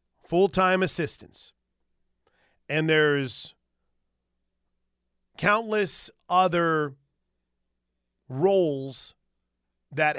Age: 40-59